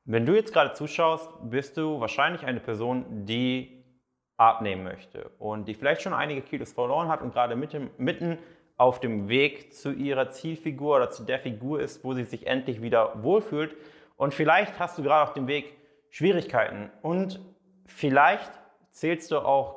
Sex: male